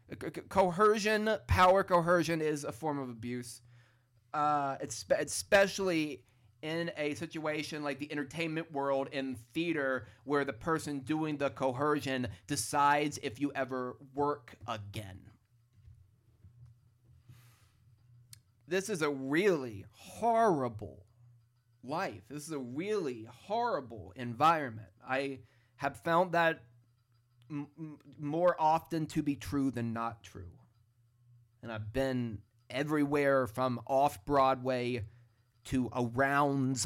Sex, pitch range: male, 120-150 Hz